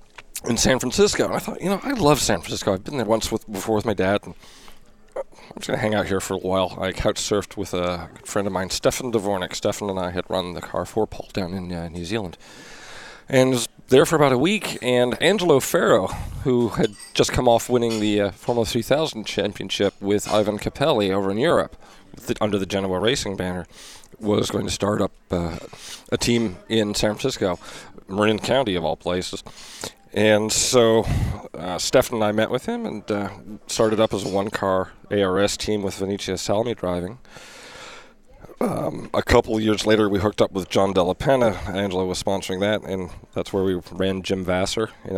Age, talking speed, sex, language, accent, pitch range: 40-59, 200 wpm, male, English, American, 95-110 Hz